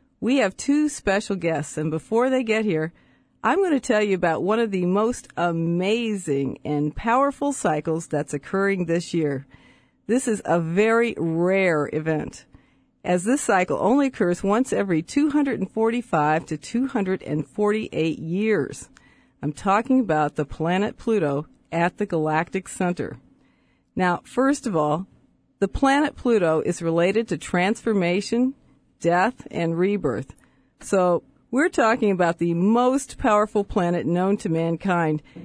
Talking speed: 135 wpm